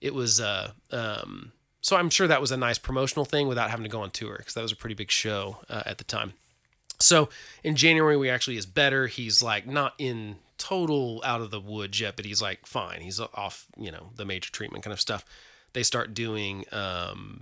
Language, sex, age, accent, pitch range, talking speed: English, male, 30-49, American, 110-140 Hz, 225 wpm